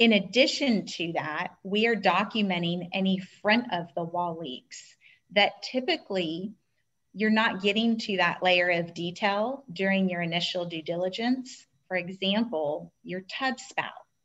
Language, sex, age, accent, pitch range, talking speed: English, female, 30-49, American, 175-210 Hz, 140 wpm